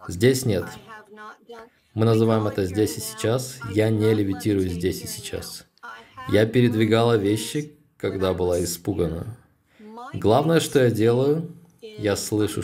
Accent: native